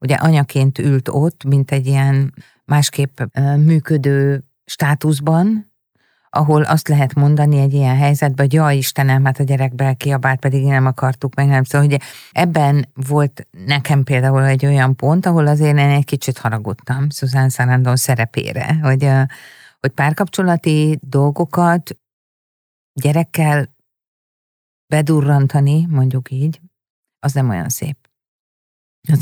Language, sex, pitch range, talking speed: Hungarian, female, 130-150 Hz, 125 wpm